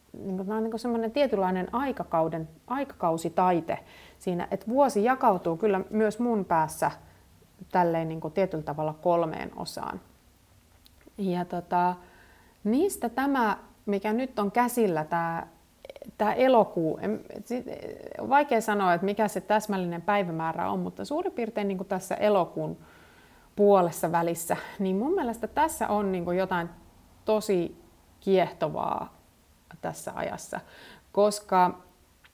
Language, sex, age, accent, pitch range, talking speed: Finnish, female, 30-49, native, 175-220 Hz, 115 wpm